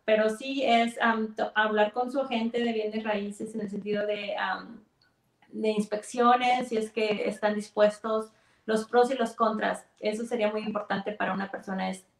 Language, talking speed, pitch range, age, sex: English, 180 wpm, 205-225 Hz, 30-49, female